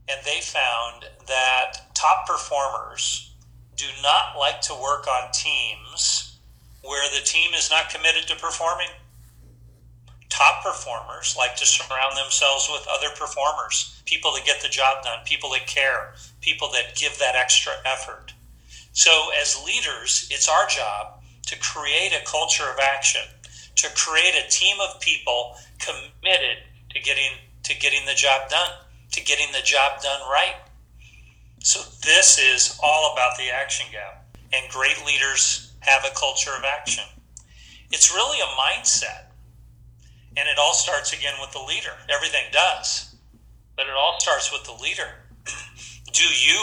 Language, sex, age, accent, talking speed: English, male, 40-59, American, 150 wpm